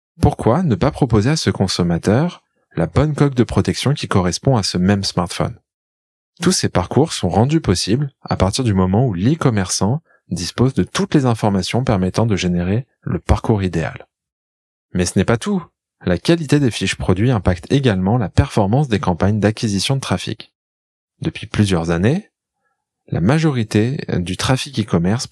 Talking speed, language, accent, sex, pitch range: 160 wpm, French, French, male, 95-135 Hz